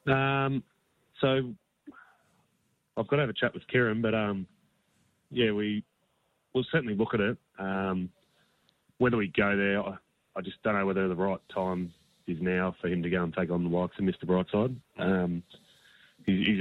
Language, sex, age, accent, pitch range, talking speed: English, male, 20-39, Australian, 90-100 Hz, 180 wpm